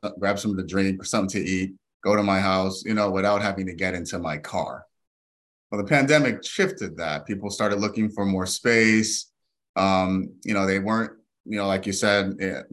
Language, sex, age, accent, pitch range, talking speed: English, male, 30-49, American, 90-105 Hz, 205 wpm